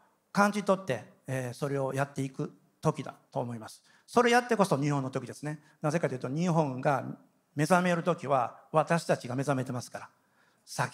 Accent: native